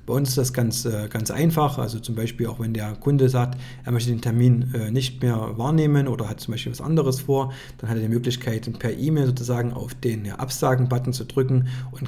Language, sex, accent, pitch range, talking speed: German, male, German, 120-135 Hz, 215 wpm